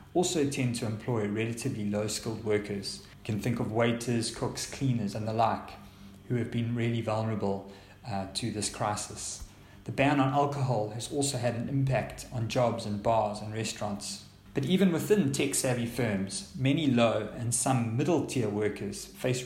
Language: English